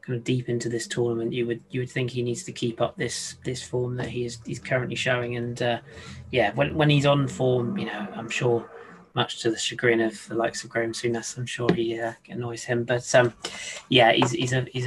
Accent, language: British, English